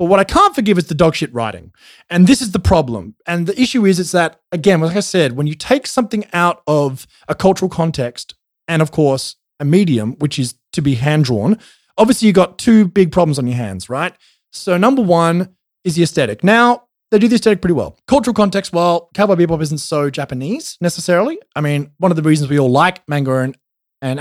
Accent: Australian